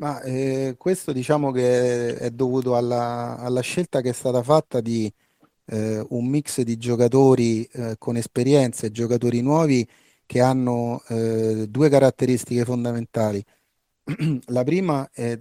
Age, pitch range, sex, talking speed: 30-49, 110-130 Hz, male, 135 wpm